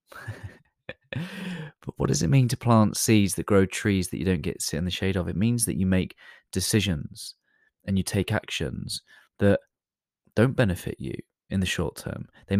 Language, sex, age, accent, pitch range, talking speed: English, male, 30-49, British, 90-105 Hz, 185 wpm